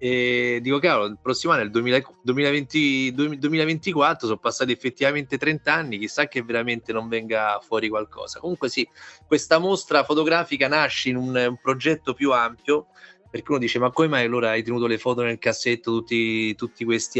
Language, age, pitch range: Italian, 30-49, 120-165 Hz